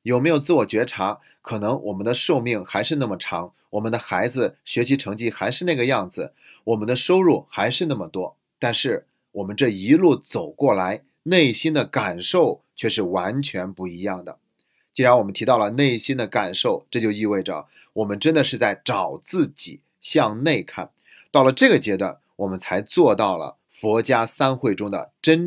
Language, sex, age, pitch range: Chinese, male, 30-49, 110-150 Hz